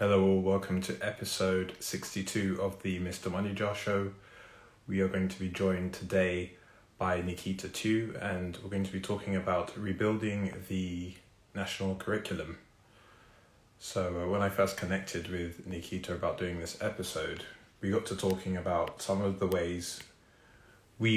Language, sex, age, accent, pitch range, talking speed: English, male, 20-39, British, 90-100 Hz, 155 wpm